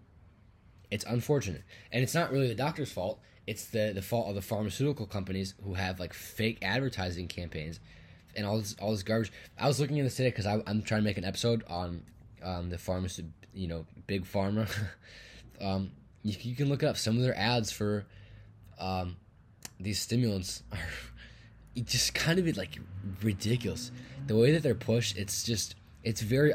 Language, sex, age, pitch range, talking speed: English, male, 20-39, 90-110 Hz, 185 wpm